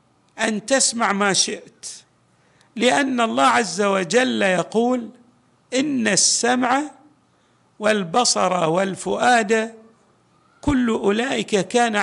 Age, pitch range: 50-69, 200-245 Hz